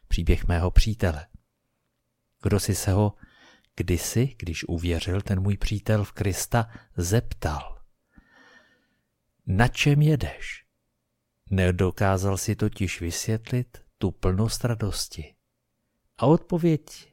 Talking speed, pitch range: 100 wpm, 95-120 Hz